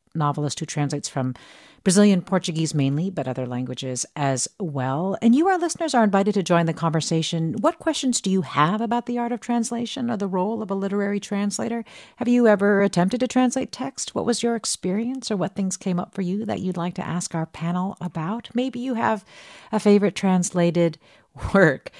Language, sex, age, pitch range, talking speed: English, female, 50-69, 155-220 Hz, 195 wpm